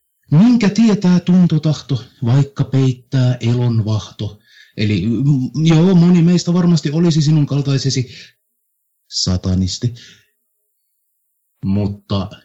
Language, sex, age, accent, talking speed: Finnish, male, 60-79, native, 75 wpm